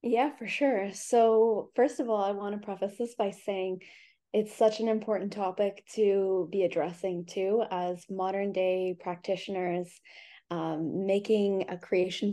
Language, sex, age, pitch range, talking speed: English, female, 20-39, 185-205 Hz, 150 wpm